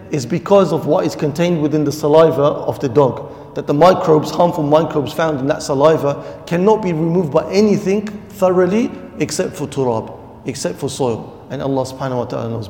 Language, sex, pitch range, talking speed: English, male, 140-175 Hz, 185 wpm